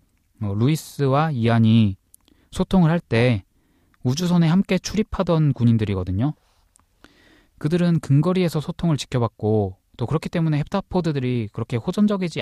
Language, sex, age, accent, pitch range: Korean, male, 20-39, native, 110-150 Hz